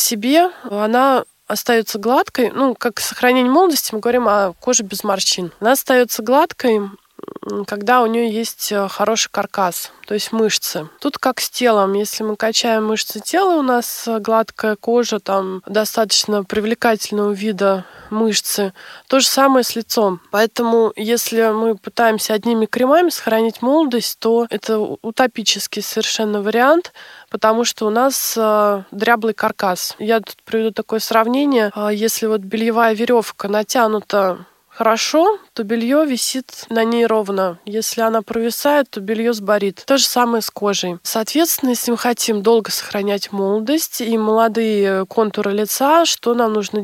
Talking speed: 140 wpm